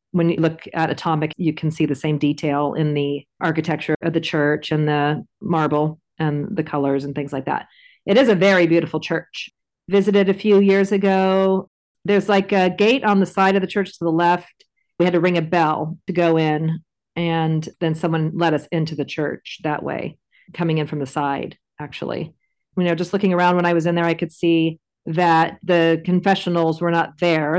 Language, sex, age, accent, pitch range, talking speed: English, female, 40-59, American, 155-180 Hz, 205 wpm